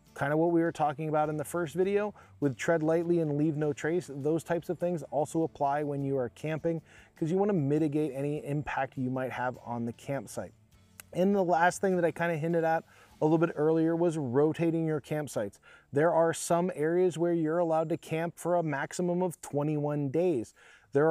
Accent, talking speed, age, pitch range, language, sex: American, 215 wpm, 20-39, 140-165 Hz, English, male